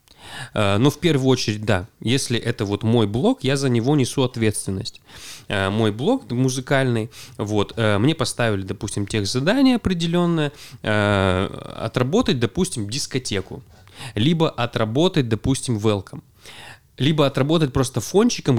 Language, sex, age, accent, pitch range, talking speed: Russian, male, 20-39, native, 110-140 Hz, 115 wpm